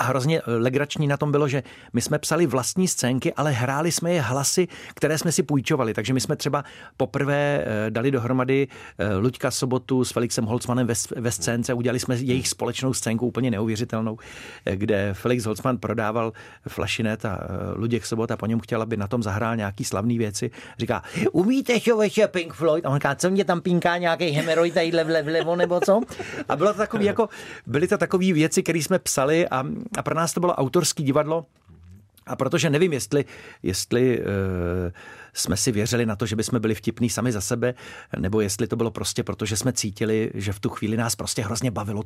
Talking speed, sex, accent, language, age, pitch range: 195 wpm, male, native, Czech, 40-59, 110-140 Hz